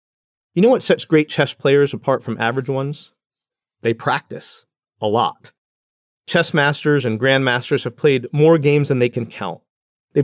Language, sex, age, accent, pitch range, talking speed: English, male, 40-59, American, 125-160 Hz, 165 wpm